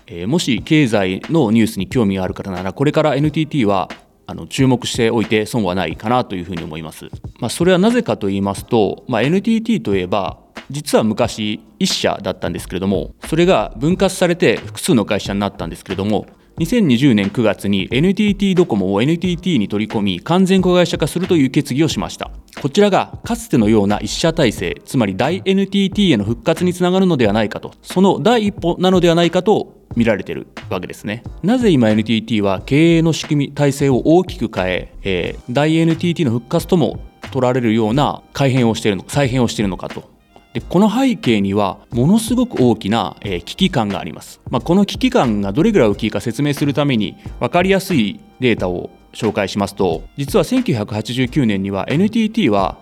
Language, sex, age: Japanese, male, 30-49